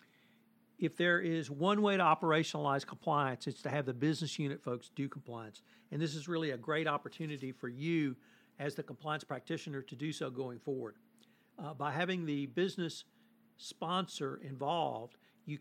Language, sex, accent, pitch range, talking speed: English, male, American, 135-190 Hz, 165 wpm